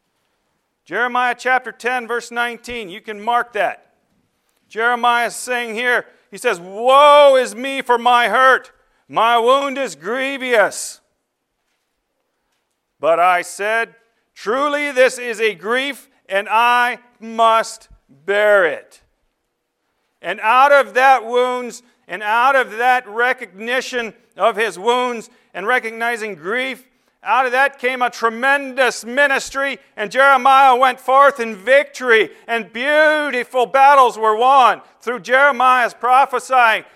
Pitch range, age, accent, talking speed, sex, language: 230-260 Hz, 50-69, American, 120 wpm, male, English